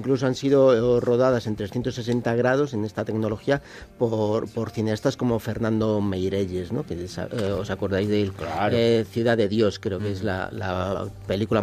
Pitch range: 110-135 Hz